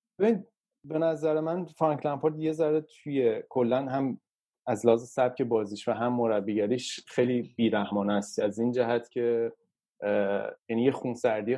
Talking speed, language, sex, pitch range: 145 wpm, Persian, male, 110-135 Hz